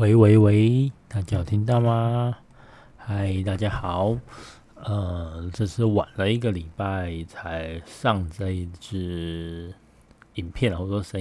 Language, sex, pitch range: Chinese, male, 90-115 Hz